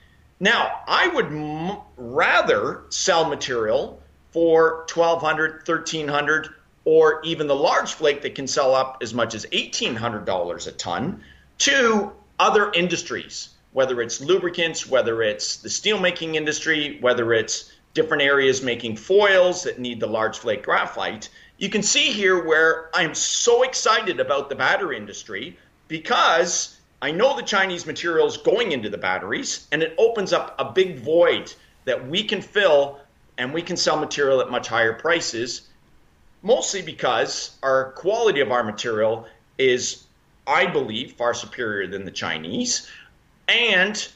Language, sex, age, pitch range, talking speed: English, male, 40-59, 140-205 Hz, 145 wpm